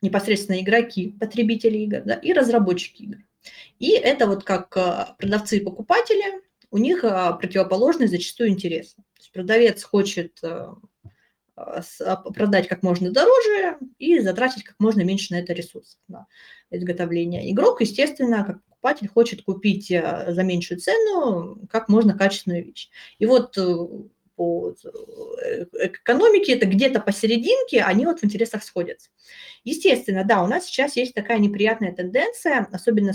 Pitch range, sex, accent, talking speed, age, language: 185-235 Hz, female, native, 130 wpm, 20-39, Russian